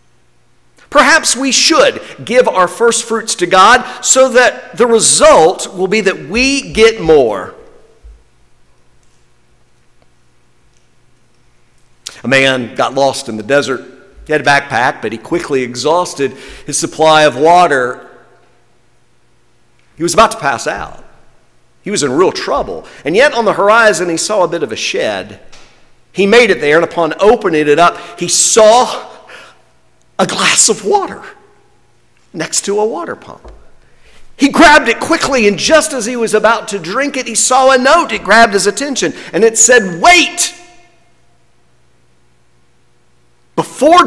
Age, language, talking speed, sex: 50-69, English, 145 wpm, male